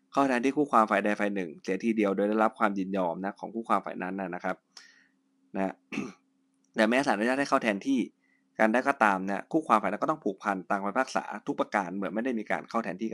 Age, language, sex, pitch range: 20-39, Thai, male, 95-115 Hz